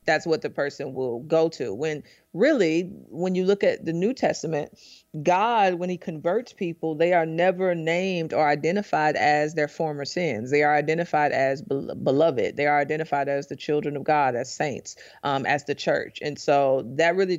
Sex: female